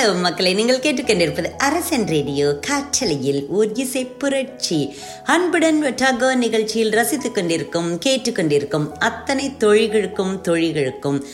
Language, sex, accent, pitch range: Tamil, female, native, 145-230 Hz